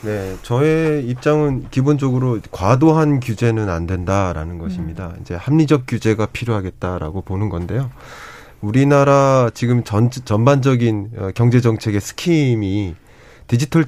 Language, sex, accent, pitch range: Korean, male, native, 110-145 Hz